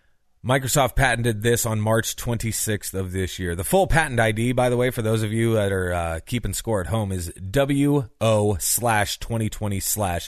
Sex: male